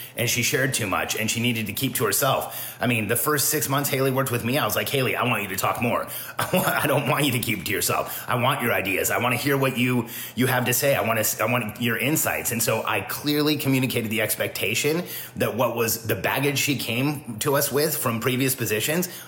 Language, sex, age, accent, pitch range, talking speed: English, male, 30-49, American, 115-135 Hz, 250 wpm